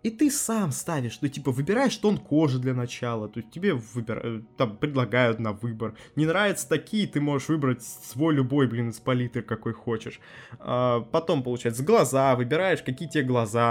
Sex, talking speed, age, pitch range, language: male, 160 wpm, 20-39, 120-165 Hz, Russian